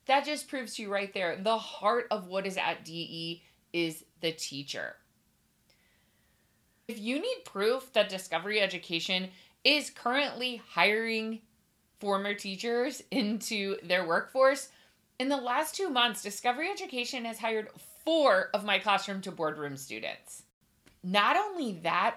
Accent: American